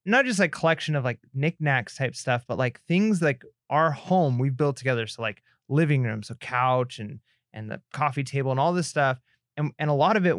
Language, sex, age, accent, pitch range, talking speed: English, male, 20-39, American, 125-150 Hz, 225 wpm